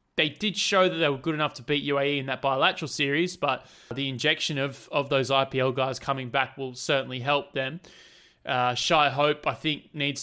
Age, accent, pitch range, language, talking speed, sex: 20-39, Australian, 130-145 Hz, English, 205 wpm, male